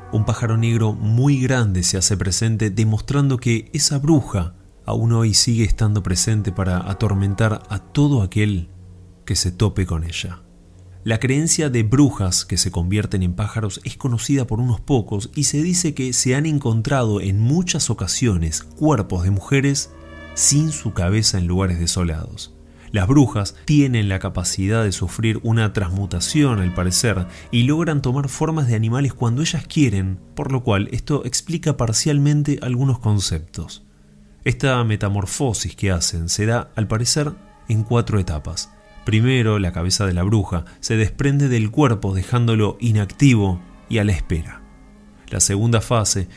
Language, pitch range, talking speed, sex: Spanish, 95-125 Hz, 155 wpm, male